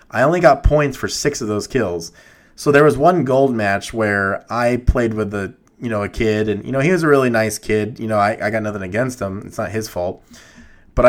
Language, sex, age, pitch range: English, male, 20-39, 105-130 Hz